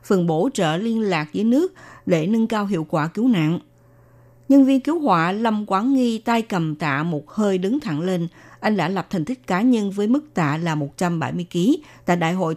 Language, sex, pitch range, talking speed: Vietnamese, female, 165-230 Hz, 215 wpm